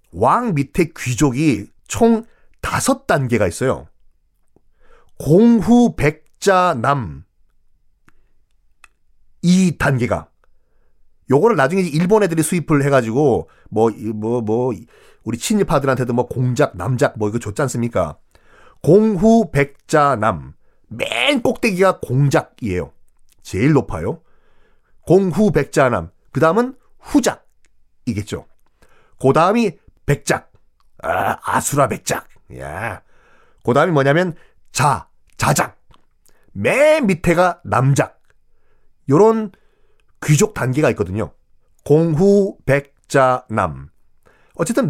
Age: 40-59